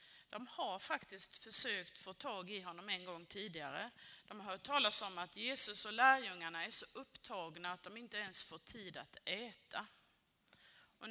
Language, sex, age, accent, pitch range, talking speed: Swedish, female, 30-49, native, 175-235 Hz, 175 wpm